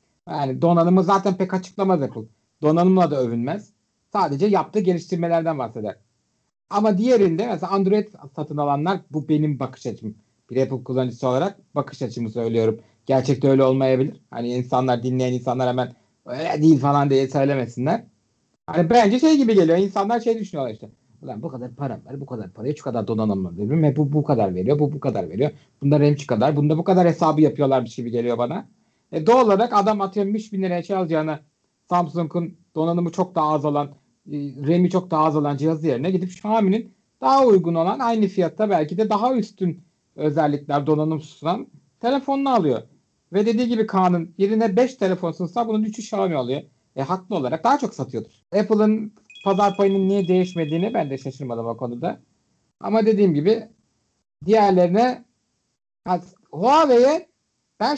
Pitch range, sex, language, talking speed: 135-200 Hz, male, Turkish, 160 wpm